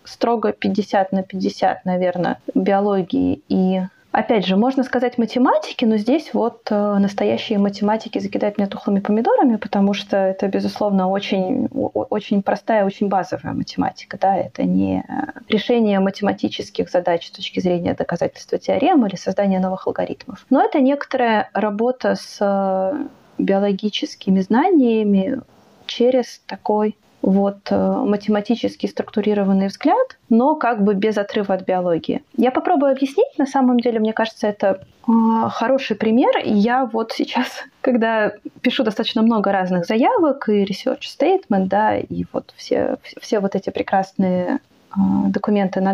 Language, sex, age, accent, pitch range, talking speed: Russian, female, 20-39, native, 195-255 Hz, 130 wpm